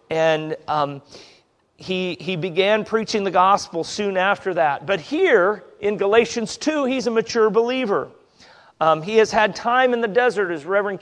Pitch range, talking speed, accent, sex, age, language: 175-225 Hz, 165 wpm, American, male, 40-59, English